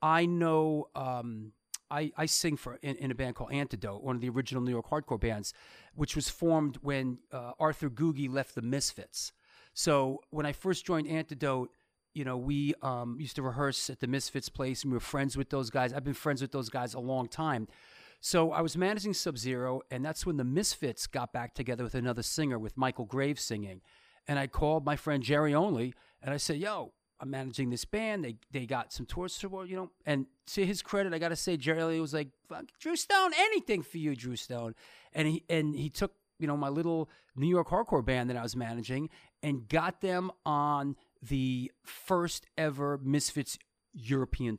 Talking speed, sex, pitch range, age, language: 205 wpm, male, 130-160 Hz, 40-59, English